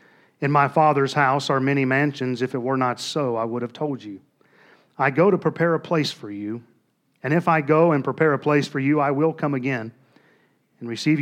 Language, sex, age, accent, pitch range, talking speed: English, male, 40-59, American, 125-150 Hz, 220 wpm